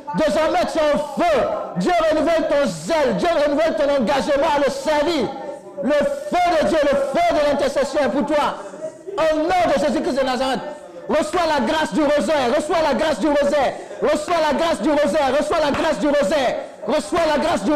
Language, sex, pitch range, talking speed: French, male, 200-300 Hz, 195 wpm